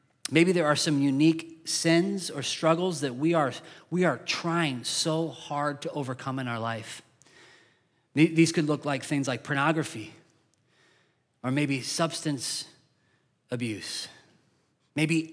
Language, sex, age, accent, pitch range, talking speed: English, male, 30-49, American, 130-160 Hz, 125 wpm